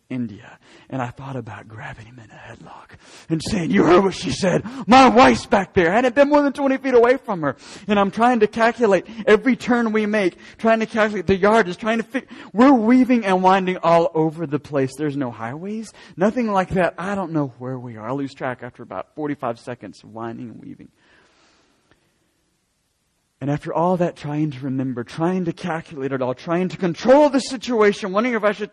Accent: American